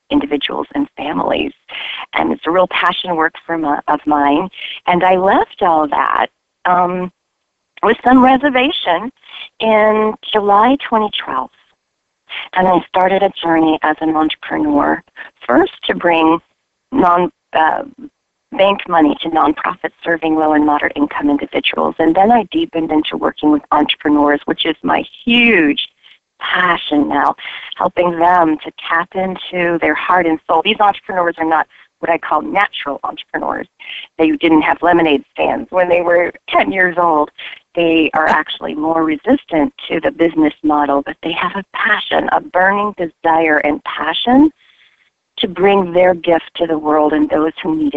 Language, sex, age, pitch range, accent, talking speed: English, female, 40-59, 155-195 Hz, American, 150 wpm